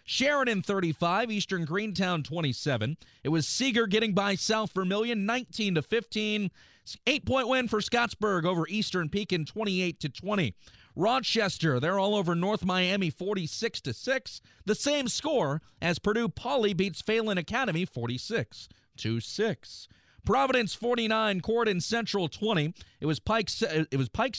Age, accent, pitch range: 40-59, American, 160-225 Hz